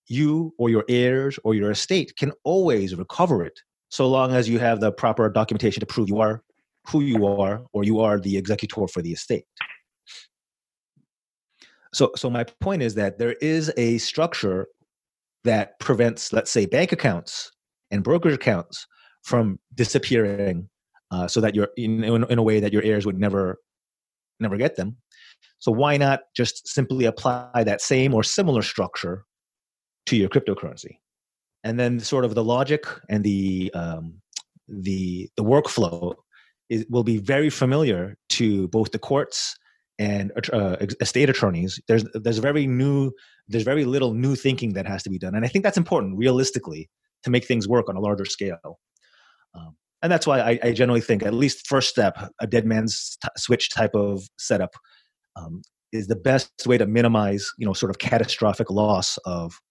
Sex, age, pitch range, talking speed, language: male, 30-49, 100-130 Hz, 170 wpm, English